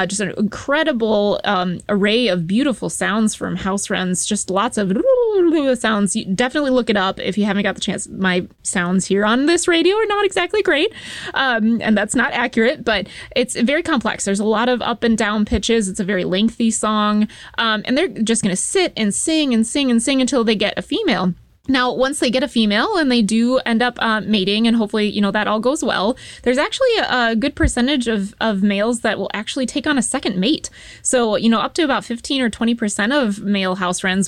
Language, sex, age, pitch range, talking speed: English, female, 20-39, 205-265 Hz, 220 wpm